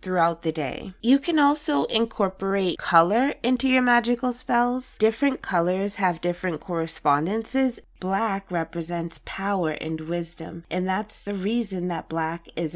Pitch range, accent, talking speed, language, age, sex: 170-220 Hz, American, 135 wpm, English, 20-39, female